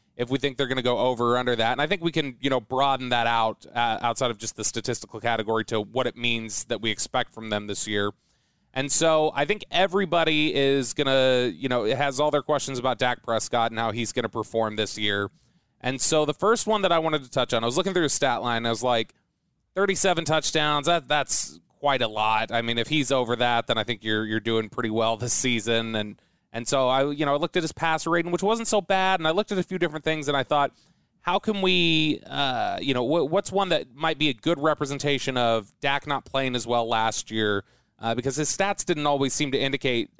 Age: 20-39